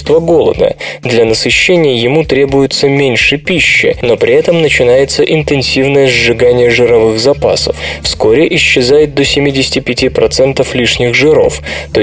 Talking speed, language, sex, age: 110 wpm, Russian, male, 20-39